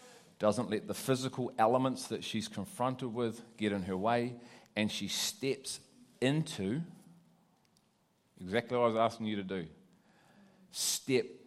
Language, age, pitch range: English, 40-59, 100-135 Hz